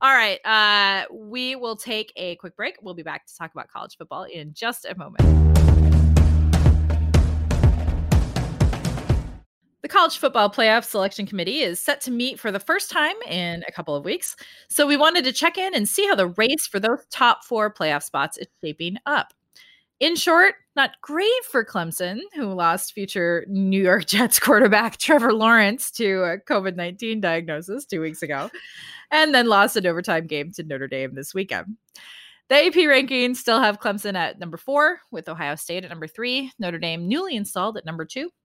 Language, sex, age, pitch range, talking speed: English, female, 20-39, 175-265 Hz, 180 wpm